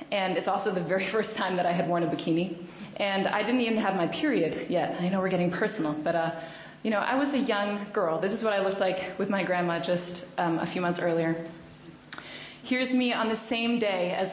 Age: 20-39